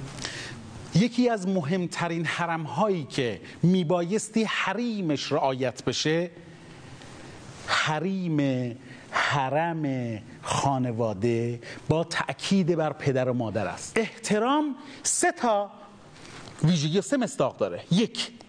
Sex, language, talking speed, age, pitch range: male, Persian, 90 wpm, 40-59, 180-265 Hz